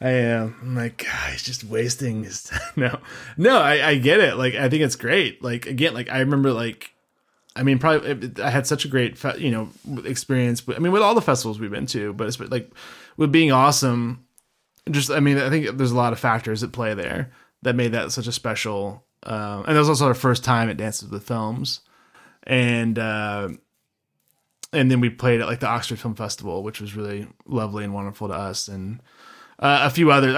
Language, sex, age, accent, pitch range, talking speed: English, male, 20-39, American, 110-135 Hz, 225 wpm